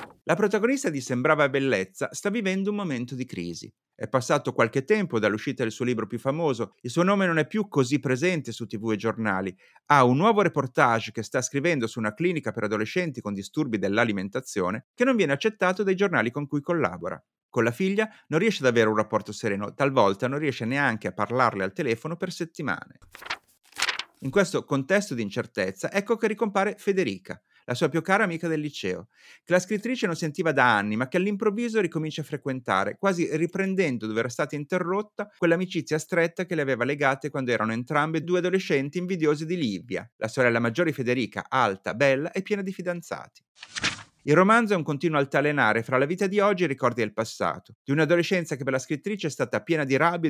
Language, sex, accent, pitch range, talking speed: Italian, male, native, 120-185 Hz, 195 wpm